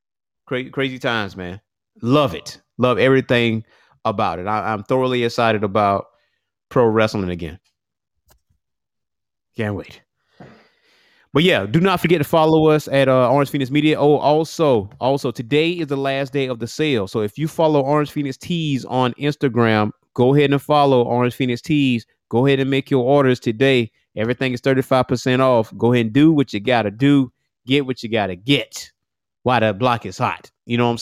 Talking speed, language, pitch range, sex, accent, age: 180 wpm, English, 115-145 Hz, male, American, 30-49